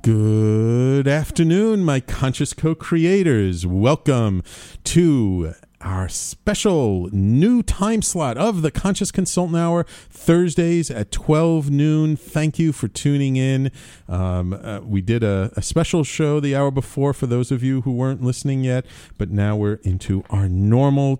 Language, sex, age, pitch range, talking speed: English, male, 40-59, 95-140 Hz, 145 wpm